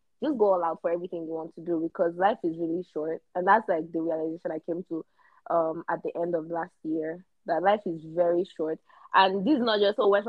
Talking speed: 250 wpm